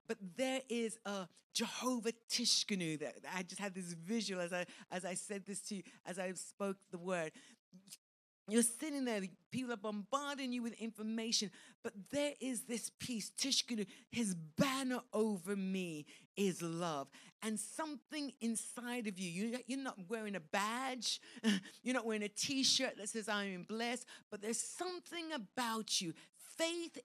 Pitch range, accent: 200-265 Hz, British